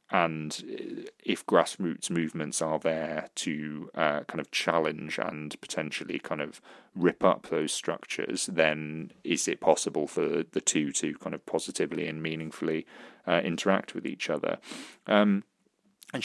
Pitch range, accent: 80-90 Hz, British